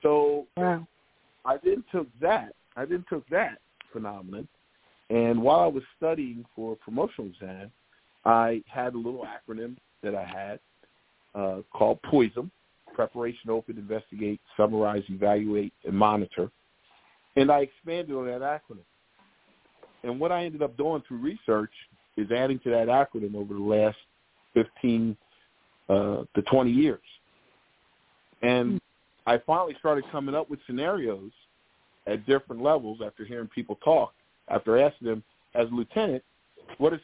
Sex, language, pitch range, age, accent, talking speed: male, English, 110-145 Hz, 50-69, American, 140 wpm